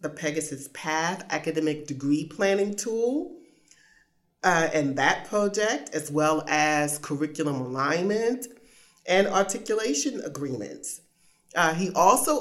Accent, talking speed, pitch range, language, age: American, 100 wpm, 145-190 Hz, English, 40-59